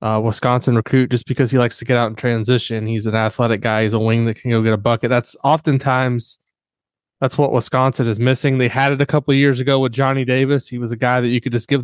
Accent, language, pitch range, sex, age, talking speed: American, English, 120-135 Hz, male, 20-39, 265 wpm